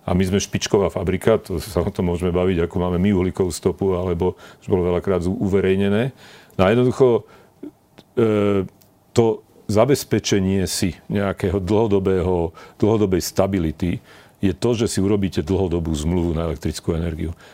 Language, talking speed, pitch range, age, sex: Slovak, 140 wpm, 90-105 Hz, 40-59, male